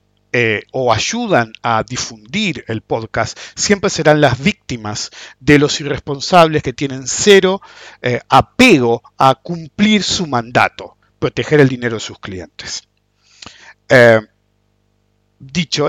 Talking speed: 115 wpm